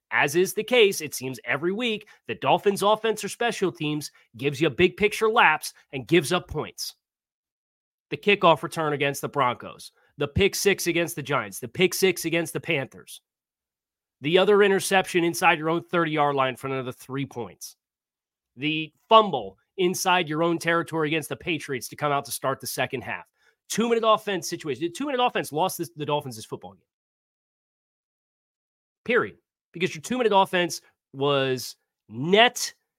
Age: 30-49